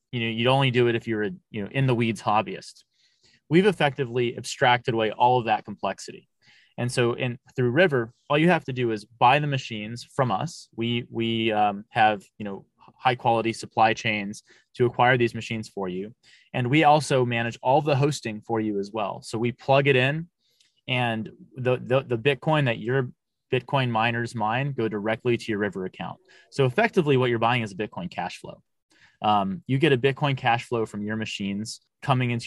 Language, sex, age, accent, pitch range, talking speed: English, male, 30-49, American, 110-130 Hz, 200 wpm